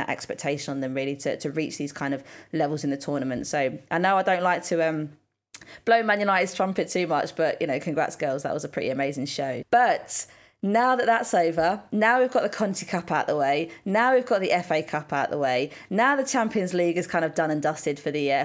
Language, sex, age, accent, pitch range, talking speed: English, female, 20-39, British, 155-210 Hz, 245 wpm